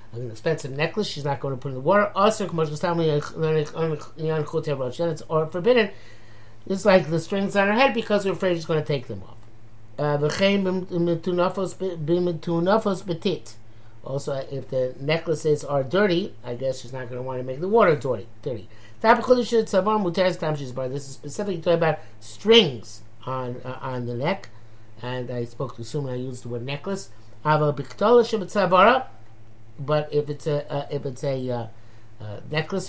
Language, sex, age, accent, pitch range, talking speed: English, male, 60-79, American, 130-175 Hz, 150 wpm